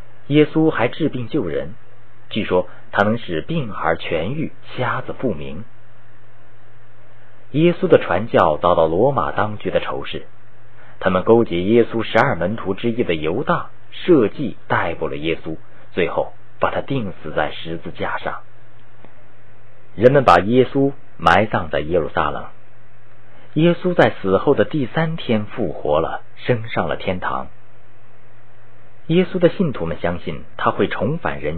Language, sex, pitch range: Chinese, male, 105-140 Hz